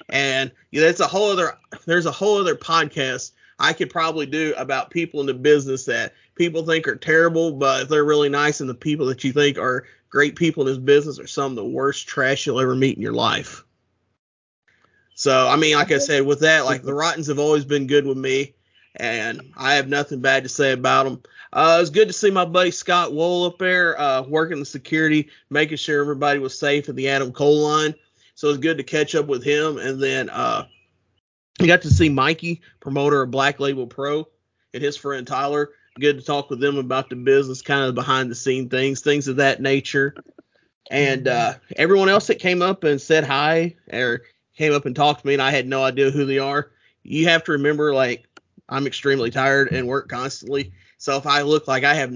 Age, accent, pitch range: 30-49, American, 135-155 Hz